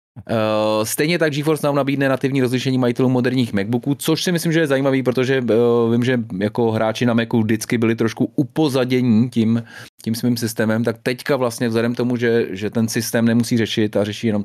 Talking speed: 185 wpm